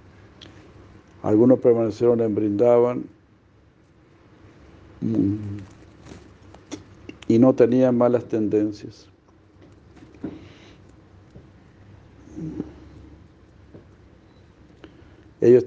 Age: 60-79